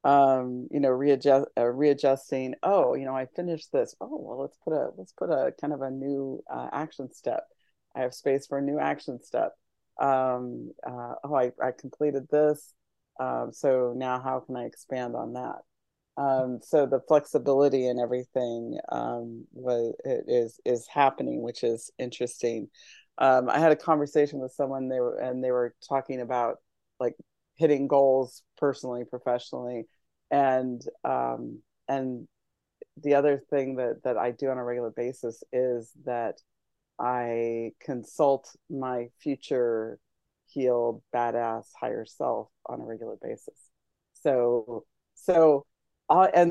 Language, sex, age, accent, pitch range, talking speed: English, female, 30-49, American, 125-145 Hz, 150 wpm